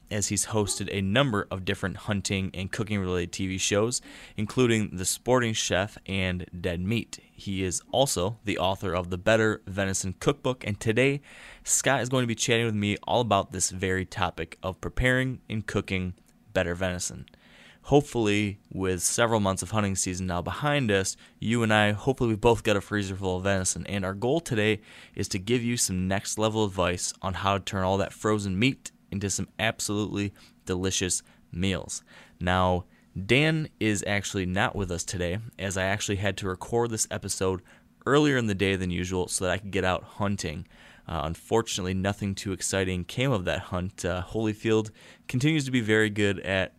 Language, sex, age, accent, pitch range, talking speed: English, male, 20-39, American, 90-110 Hz, 180 wpm